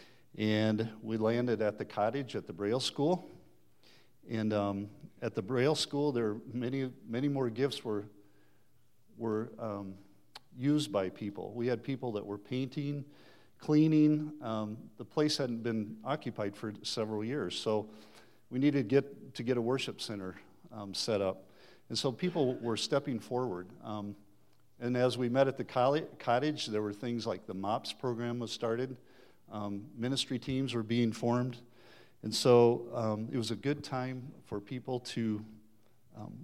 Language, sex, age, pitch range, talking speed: English, male, 50-69, 110-130 Hz, 165 wpm